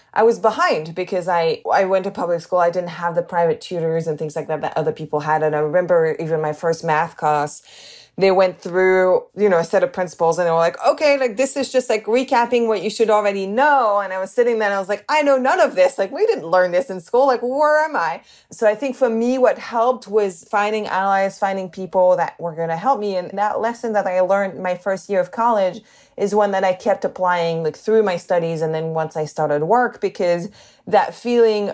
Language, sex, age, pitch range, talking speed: English, female, 20-39, 180-240 Hz, 245 wpm